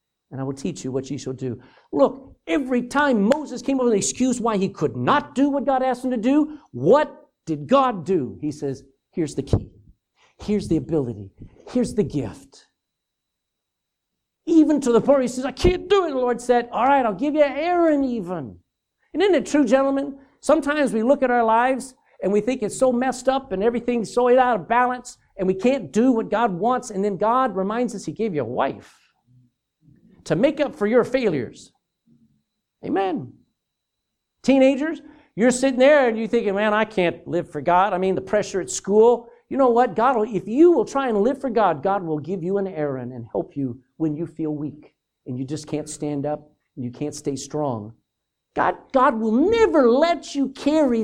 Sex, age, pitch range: male, 60-79, 165-270 Hz